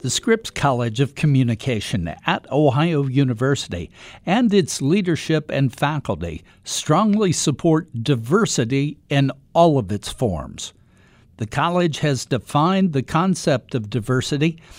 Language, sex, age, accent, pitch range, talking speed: English, male, 60-79, American, 125-170 Hz, 120 wpm